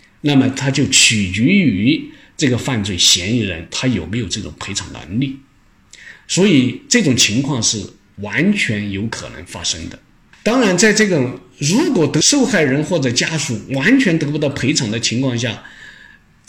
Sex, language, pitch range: male, Chinese, 115-180 Hz